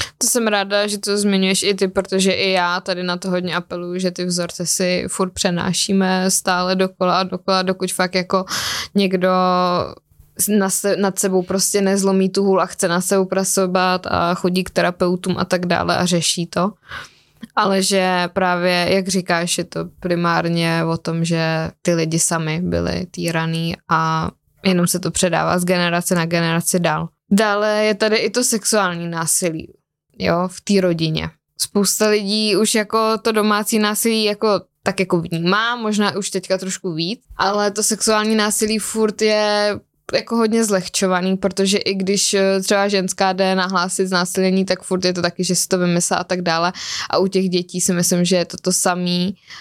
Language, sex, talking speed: Czech, female, 175 wpm